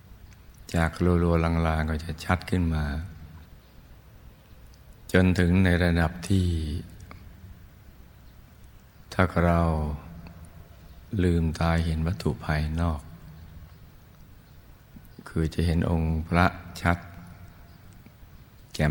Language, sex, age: Thai, male, 60-79